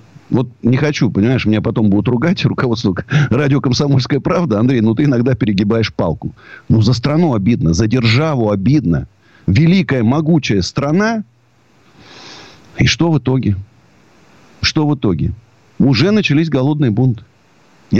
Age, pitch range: 50-69, 115-165 Hz